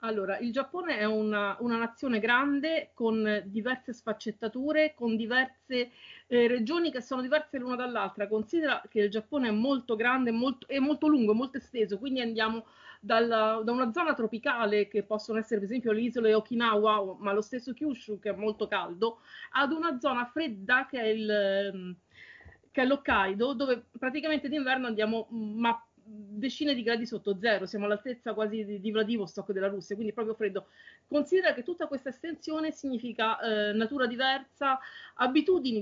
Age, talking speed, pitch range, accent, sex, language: 40-59, 155 wpm, 215-275 Hz, native, female, Italian